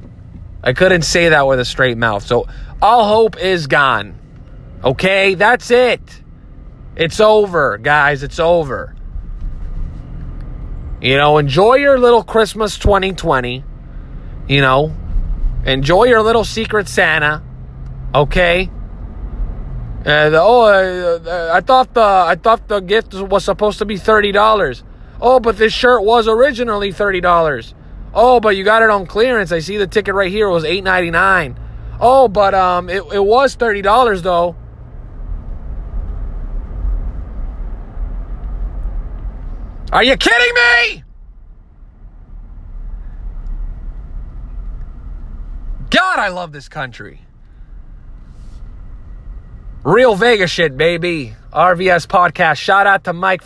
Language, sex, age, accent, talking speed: English, male, 20-39, American, 115 wpm